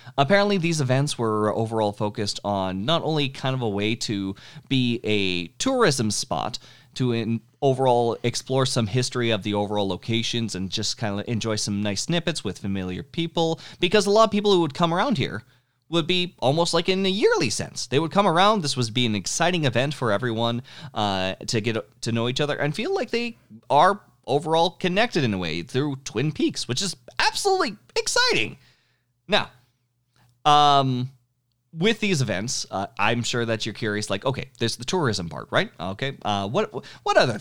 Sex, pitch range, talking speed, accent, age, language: male, 105-145 Hz, 185 wpm, American, 30-49, English